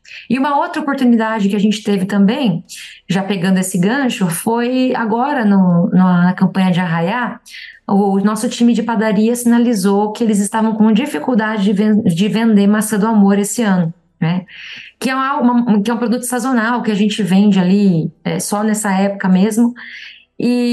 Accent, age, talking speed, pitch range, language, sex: Brazilian, 20-39, 180 wpm, 200-240 Hz, Portuguese, female